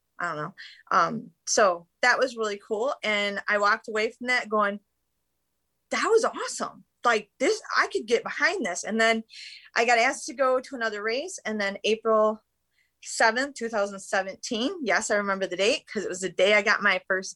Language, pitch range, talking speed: English, 200-240 Hz, 190 wpm